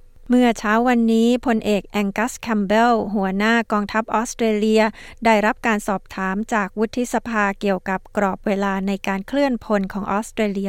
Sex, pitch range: female, 200-230 Hz